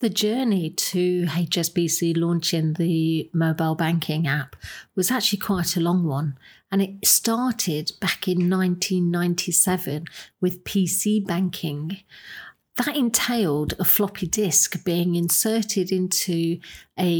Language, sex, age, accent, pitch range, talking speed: English, female, 50-69, British, 165-200 Hz, 115 wpm